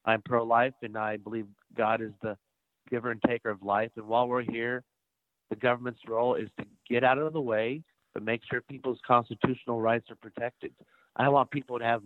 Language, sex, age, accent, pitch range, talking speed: English, male, 50-69, American, 110-130 Hz, 200 wpm